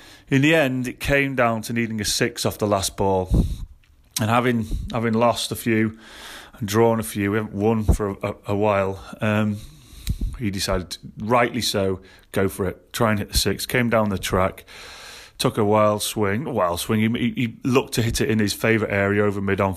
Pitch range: 105-120 Hz